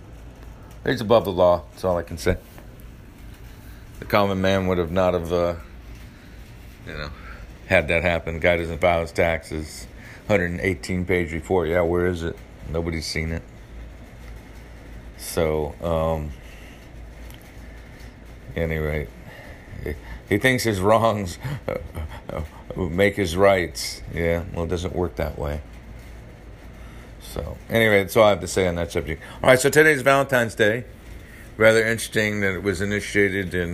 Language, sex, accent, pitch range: English, male, American, 85-105 Hz